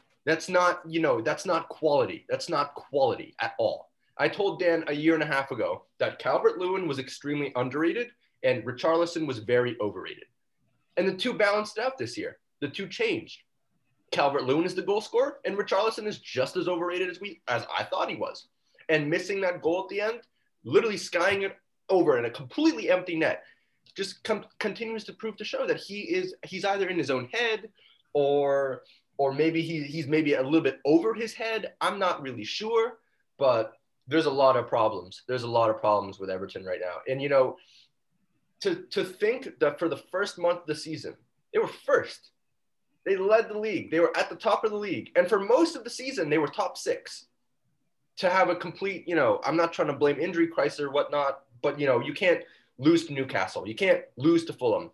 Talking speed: 205 wpm